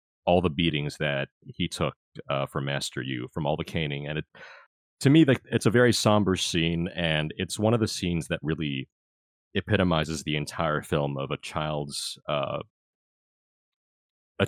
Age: 30-49